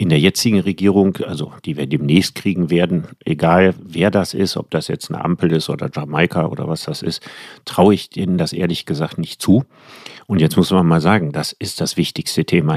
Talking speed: 210 wpm